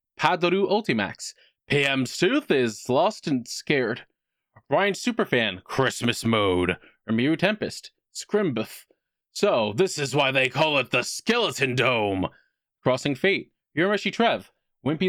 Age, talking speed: 20-39, 120 wpm